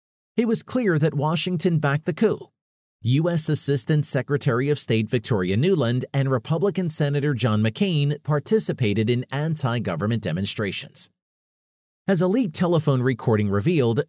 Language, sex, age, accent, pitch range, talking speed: English, male, 30-49, American, 125-175 Hz, 130 wpm